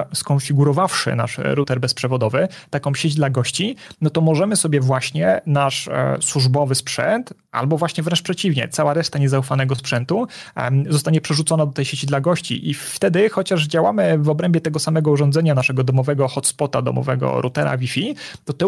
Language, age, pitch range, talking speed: Polish, 30-49, 130-155 Hz, 155 wpm